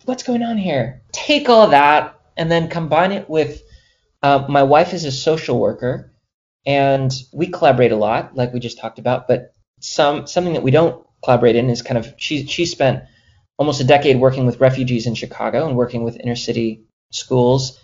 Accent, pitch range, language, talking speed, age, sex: American, 120-145 Hz, English, 190 wpm, 20-39, male